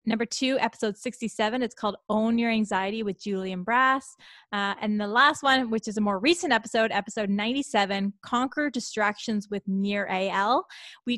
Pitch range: 195-245 Hz